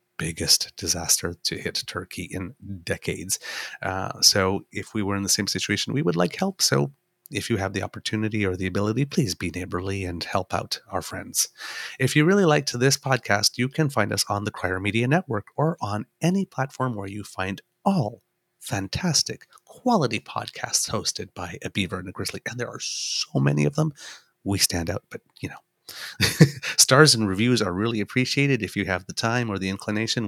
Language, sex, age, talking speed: English, male, 30-49, 190 wpm